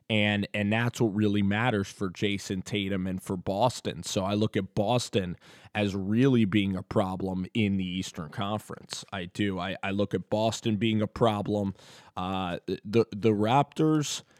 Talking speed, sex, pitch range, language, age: 165 wpm, male, 100-130 Hz, English, 20-39